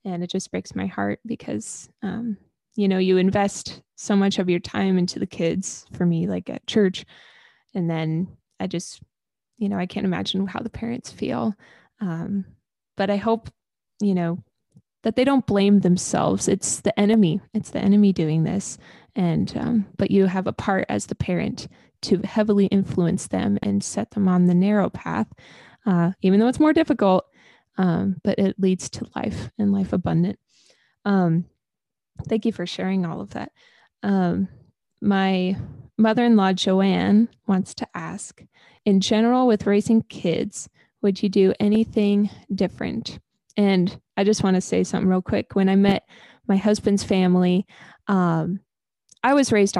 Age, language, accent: 20-39, English, American